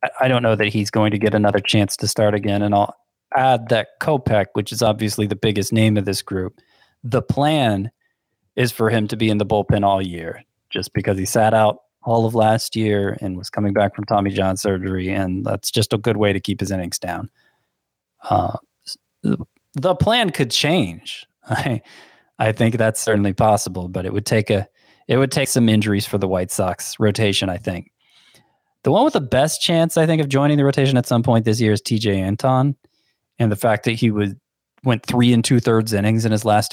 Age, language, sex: 20-39, English, male